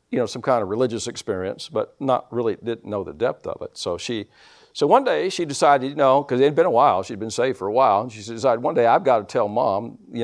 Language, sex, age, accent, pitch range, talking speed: English, male, 50-69, American, 130-185 Hz, 280 wpm